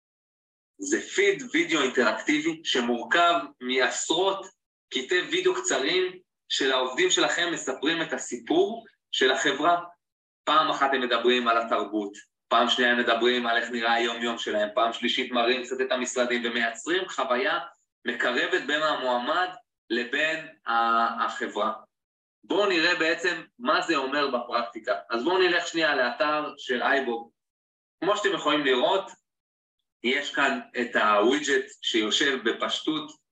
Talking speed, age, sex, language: 125 wpm, 20-39, male, Hebrew